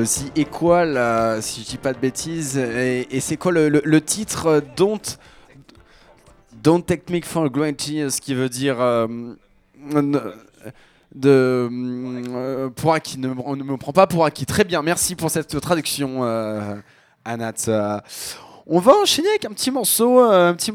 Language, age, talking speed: French, 20-39, 170 wpm